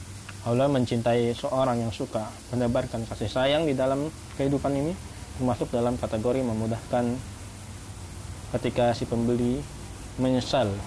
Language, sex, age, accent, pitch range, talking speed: Indonesian, male, 20-39, native, 105-125 Hz, 110 wpm